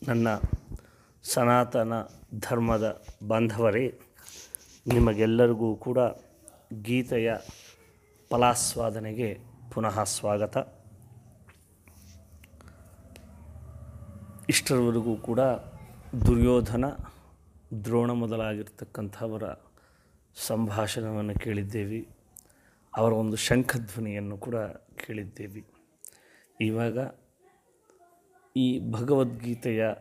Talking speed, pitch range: 50 wpm, 105-125 Hz